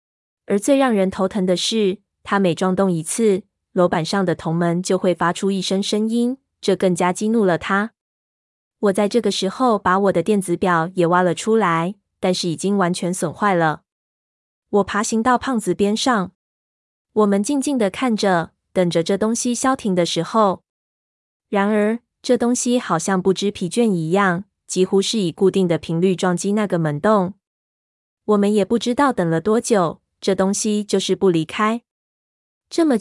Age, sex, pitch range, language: 20-39, female, 180-220 Hz, Chinese